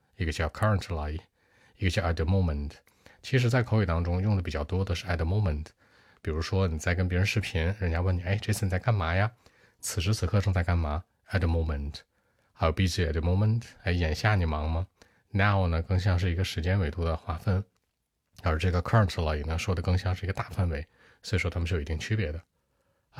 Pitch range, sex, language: 80-95 Hz, male, Chinese